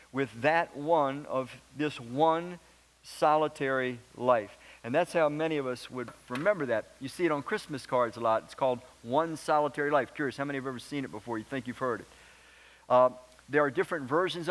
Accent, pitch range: American, 135-210 Hz